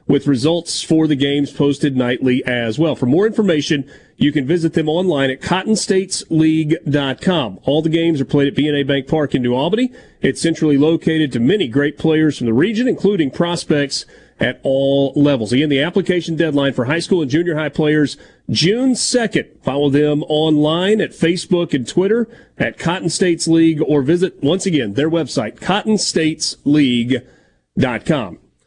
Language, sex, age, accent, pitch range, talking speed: English, male, 40-59, American, 140-180 Hz, 155 wpm